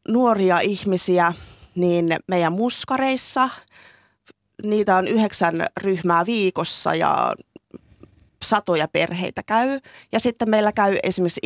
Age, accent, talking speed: 30-49, native, 100 wpm